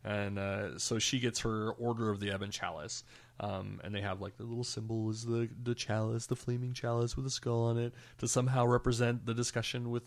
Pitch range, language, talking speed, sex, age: 110-125 Hz, English, 220 wpm, male, 20-39